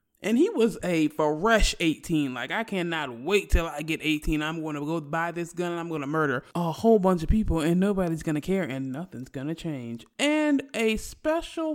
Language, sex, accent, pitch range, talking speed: English, male, American, 165-220 Hz, 205 wpm